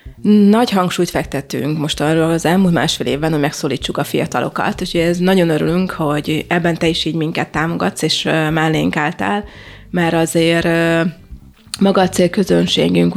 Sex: female